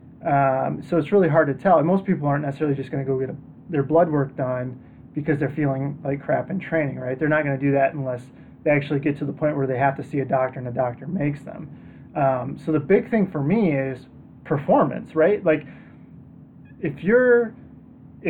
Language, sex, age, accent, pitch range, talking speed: English, male, 20-39, American, 135-155 Hz, 225 wpm